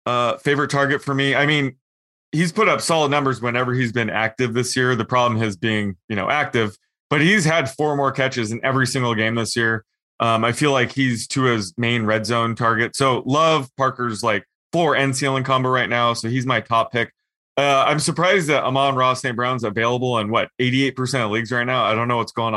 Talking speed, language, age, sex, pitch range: 225 wpm, English, 20-39, male, 115-135 Hz